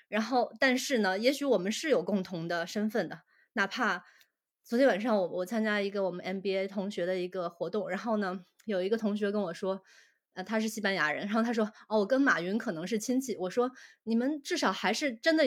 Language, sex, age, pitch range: Chinese, female, 20-39, 190-250 Hz